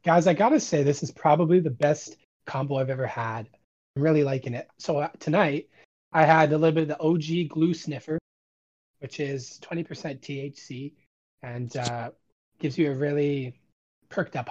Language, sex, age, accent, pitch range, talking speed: English, male, 30-49, American, 130-165 Hz, 175 wpm